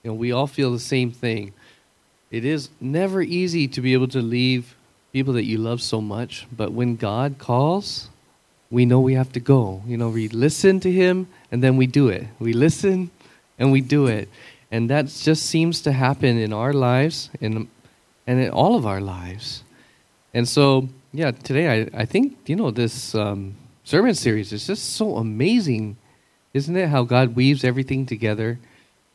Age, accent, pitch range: 30-49, American, 115-140 Hz